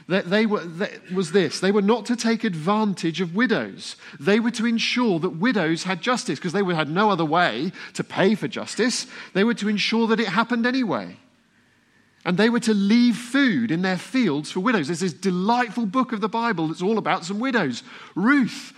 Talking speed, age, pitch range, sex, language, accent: 205 wpm, 40-59, 160-230 Hz, male, English, British